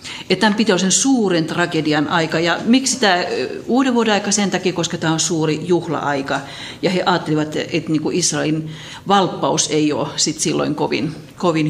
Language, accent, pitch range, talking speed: Finnish, native, 150-200 Hz, 150 wpm